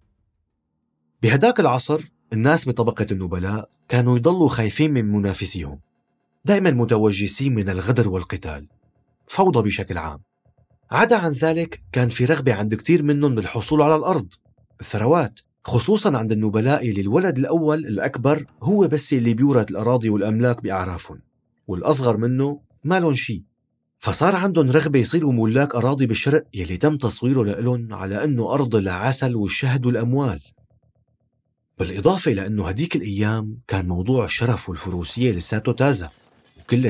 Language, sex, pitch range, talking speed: Arabic, male, 105-135 Hz, 125 wpm